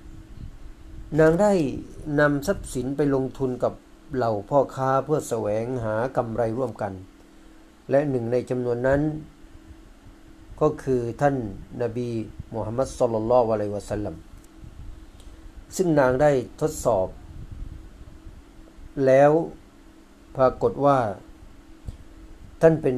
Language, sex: Thai, male